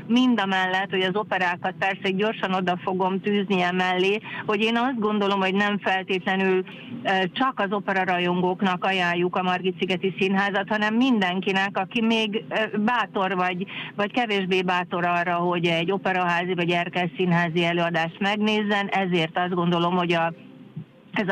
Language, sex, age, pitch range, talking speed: Hungarian, female, 40-59, 175-200 Hz, 130 wpm